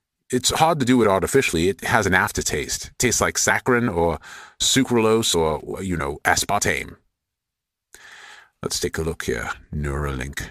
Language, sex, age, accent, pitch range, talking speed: English, male, 40-59, American, 80-115 Hz, 150 wpm